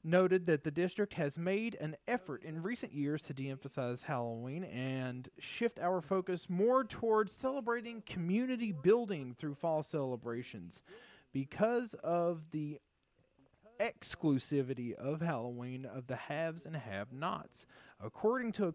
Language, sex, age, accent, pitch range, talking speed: English, male, 30-49, American, 130-190 Hz, 130 wpm